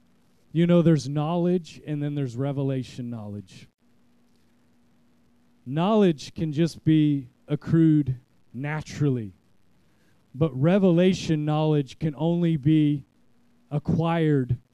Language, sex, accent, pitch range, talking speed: English, male, American, 135-165 Hz, 90 wpm